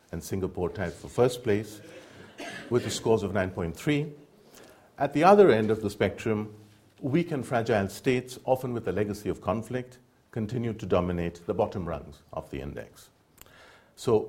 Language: English